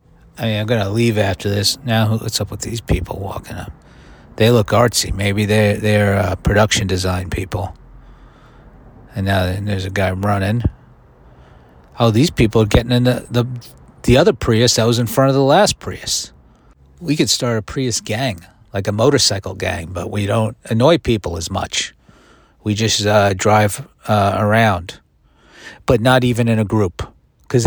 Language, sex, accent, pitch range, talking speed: English, male, American, 95-120 Hz, 170 wpm